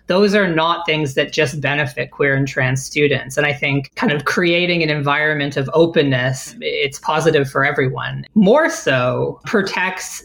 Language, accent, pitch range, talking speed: English, American, 135-155 Hz, 165 wpm